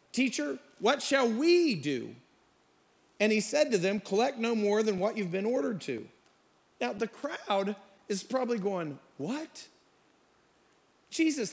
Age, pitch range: 40-59, 205-275 Hz